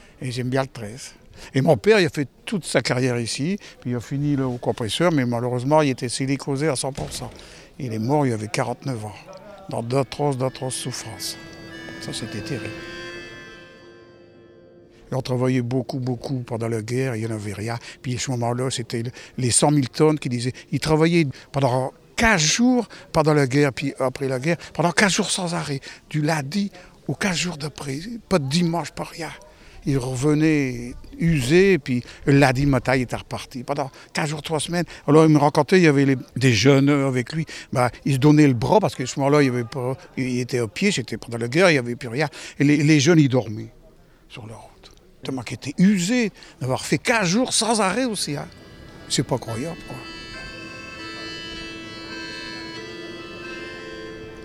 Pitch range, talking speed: 120-155 Hz, 190 wpm